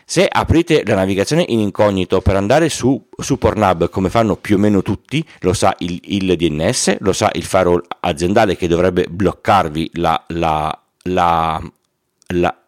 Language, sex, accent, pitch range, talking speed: Italian, male, native, 90-120 Hz, 160 wpm